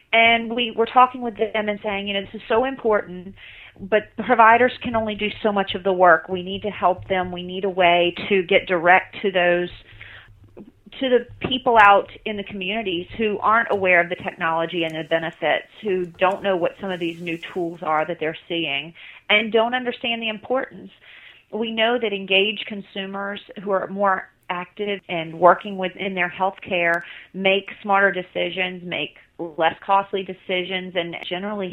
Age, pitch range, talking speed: 40-59, 175-215 Hz, 180 wpm